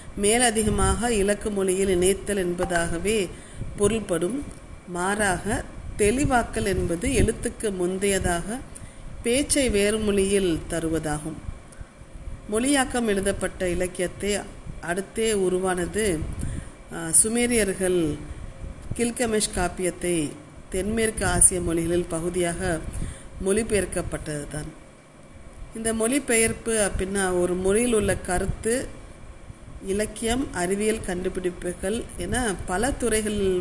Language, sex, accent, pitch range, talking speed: Tamil, female, native, 170-210 Hz, 70 wpm